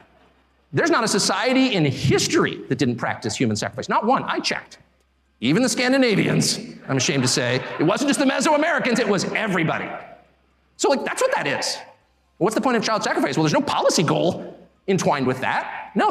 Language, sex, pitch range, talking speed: English, male, 120-200 Hz, 190 wpm